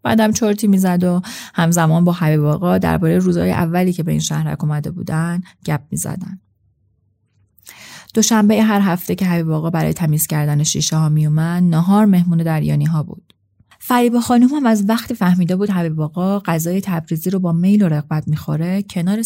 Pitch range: 155-185 Hz